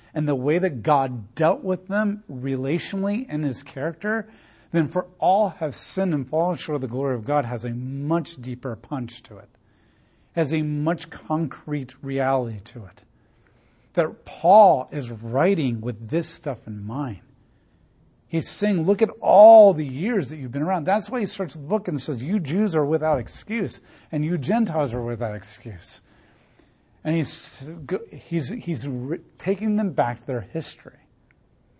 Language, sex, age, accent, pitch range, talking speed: English, male, 40-59, American, 125-170 Hz, 170 wpm